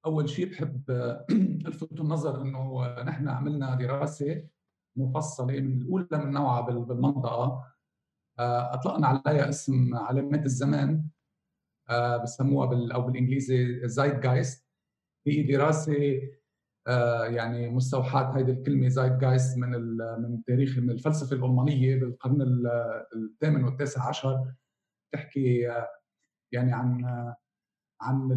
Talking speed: 100 wpm